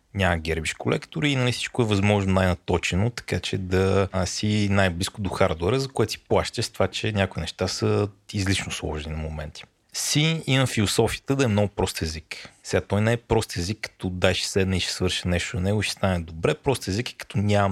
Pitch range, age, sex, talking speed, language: 90-105 Hz, 30-49, male, 205 wpm, Bulgarian